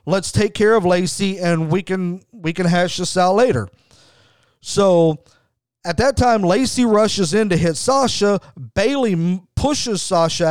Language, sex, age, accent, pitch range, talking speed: English, male, 40-59, American, 160-210 Hz, 155 wpm